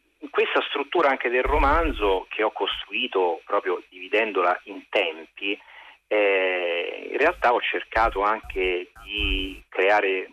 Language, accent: Italian, native